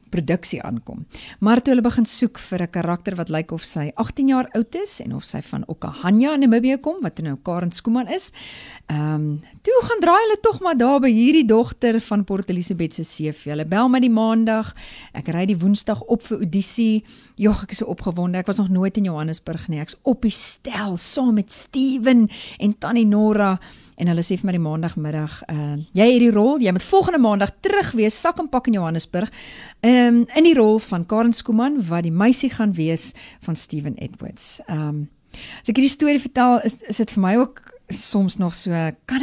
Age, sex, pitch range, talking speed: 40-59, female, 175-250 Hz, 205 wpm